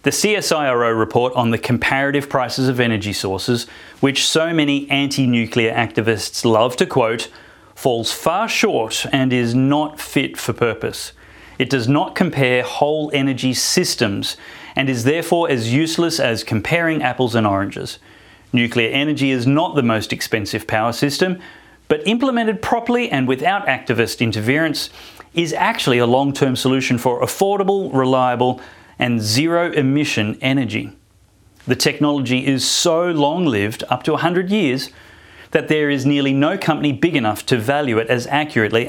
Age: 30-49